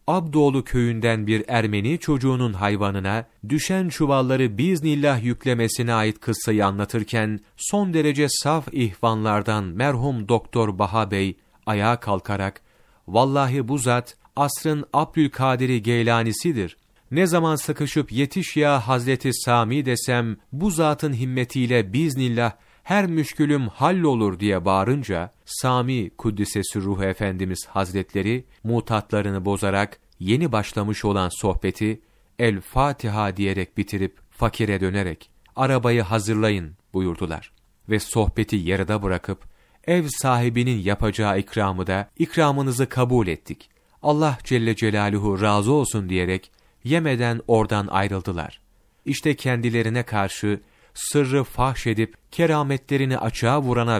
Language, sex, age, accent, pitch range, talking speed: Turkish, male, 40-59, native, 100-140 Hz, 105 wpm